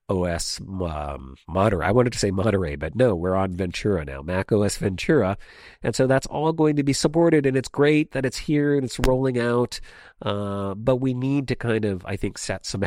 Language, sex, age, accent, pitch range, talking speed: English, male, 40-59, American, 95-120 Hz, 210 wpm